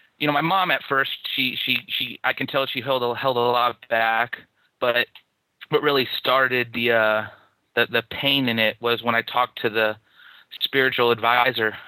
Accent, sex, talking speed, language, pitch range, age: American, male, 190 wpm, English, 115-135 Hz, 30-49